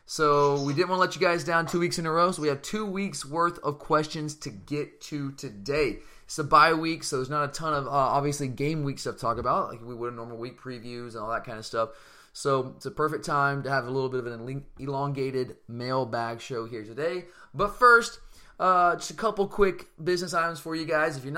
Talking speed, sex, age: 245 wpm, male, 20-39